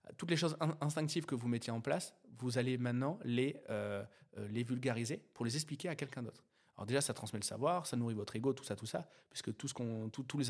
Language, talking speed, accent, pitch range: French, 245 wpm, French, 110-135 Hz